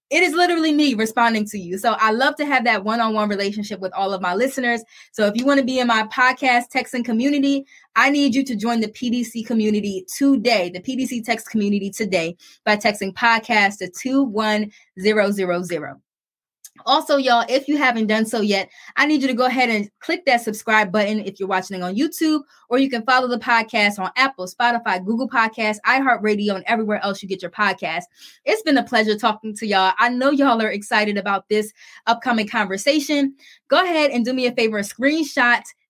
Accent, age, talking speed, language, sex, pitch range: American, 20-39, 195 wpm, English, female, 210-275 Hz